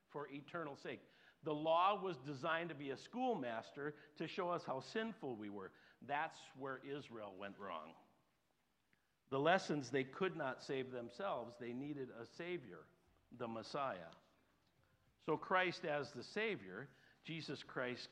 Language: English